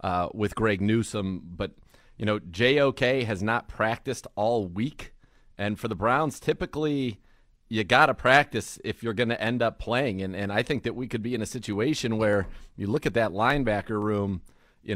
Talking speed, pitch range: 185 wpm, 100-125 Hz